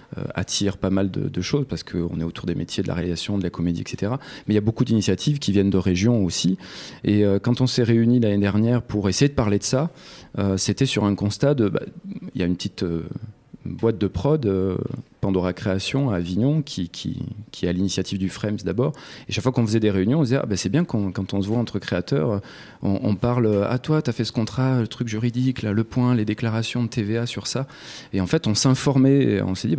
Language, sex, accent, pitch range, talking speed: French, male, French, 95-125 Hz, 235 wpm